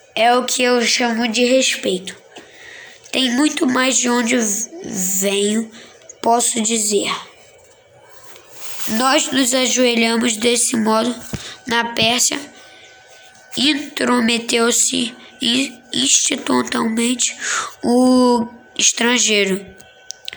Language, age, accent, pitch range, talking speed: Portuguese, 10-29, Brazilian, 225-265 Hz, 75 wpm